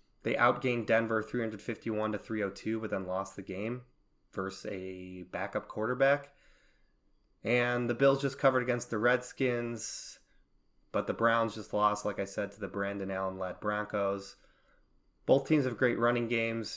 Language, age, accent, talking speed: English, 20-39, American, 145 wpm